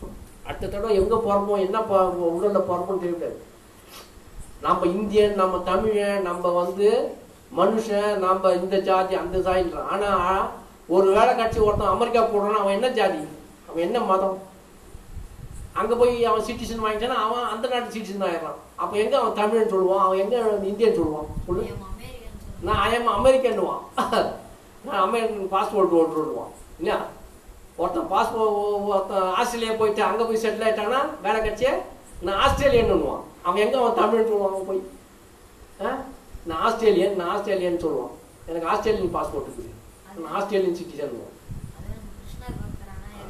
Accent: native